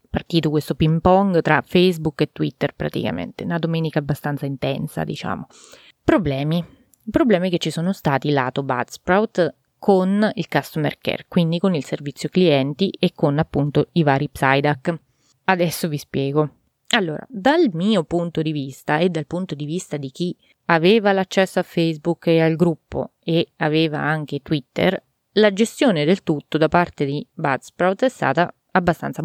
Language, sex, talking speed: Italian, female, 155 wpm